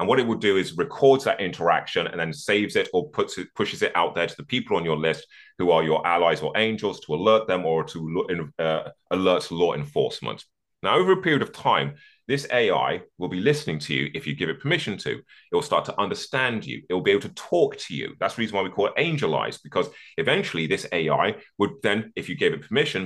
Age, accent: 30-49, British